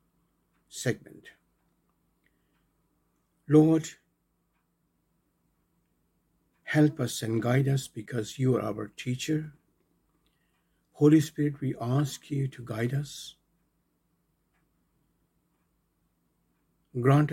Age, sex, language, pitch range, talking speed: 60-79, male, English, 115-140 Hz, 75 wpm